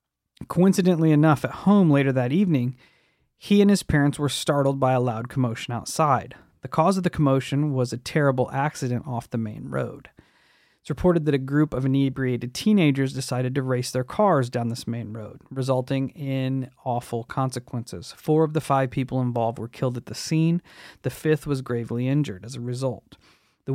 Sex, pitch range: male, 125-155 Hz